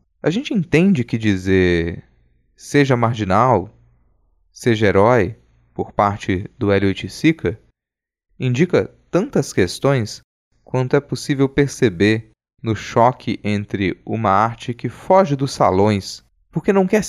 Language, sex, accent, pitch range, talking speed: Portuguese, male, Brazilian, 95-150 Hz, 115 wpm